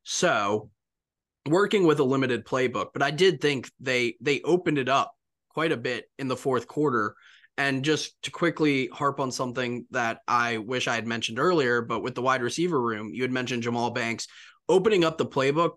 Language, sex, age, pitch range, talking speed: English, male, 20-39, 120-140 Hz, 195 wpm